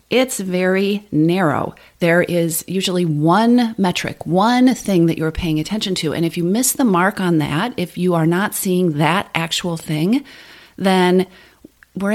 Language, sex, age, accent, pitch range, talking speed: English, female, 40-59, American, 150-195 Hz, 165 wpm